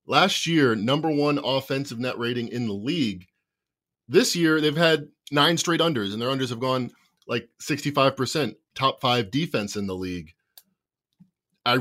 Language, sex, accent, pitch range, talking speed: English, male, American, 110-145 Hz, 165 wpm